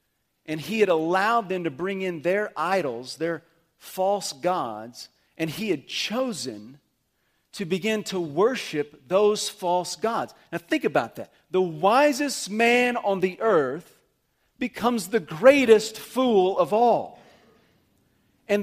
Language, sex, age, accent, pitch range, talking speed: English, male, 40-59, American, 165-235 Hz, 130 wpm